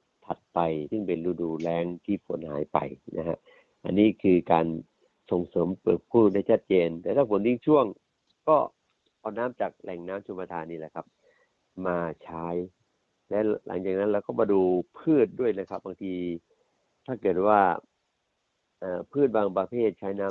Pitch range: 85-100 Hz